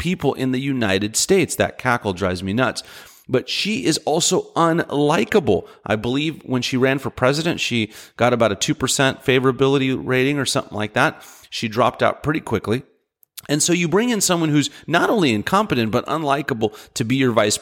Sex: male